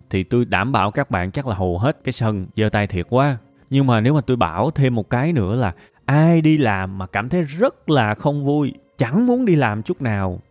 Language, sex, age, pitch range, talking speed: Vietnamese, male, 20-39, 100-140 Hz, 245 wpm